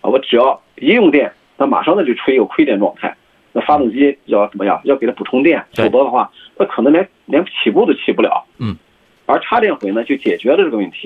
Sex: male